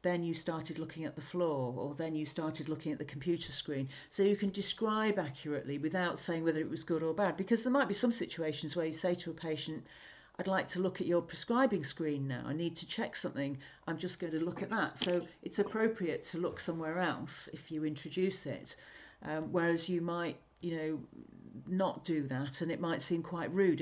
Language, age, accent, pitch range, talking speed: English, 50-69, British, 160-190 Hz, 220 wpm